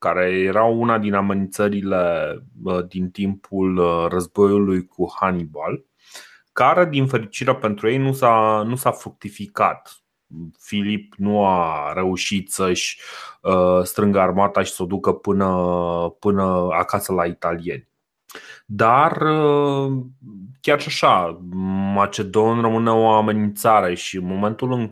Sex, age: male, 30-49